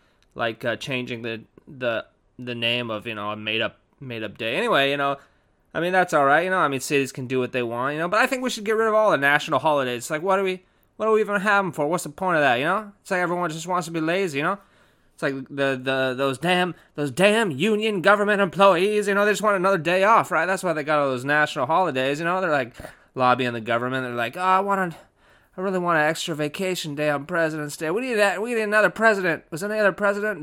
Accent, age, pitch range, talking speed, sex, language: American, 20-39, 140-205 Hz, 270 wpm, male, English